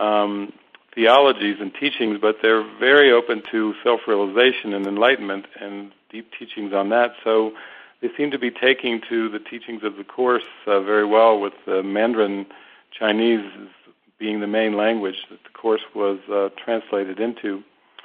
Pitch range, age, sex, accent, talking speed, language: 105-125 Hz, 50-69, male, American, 155 wpm, English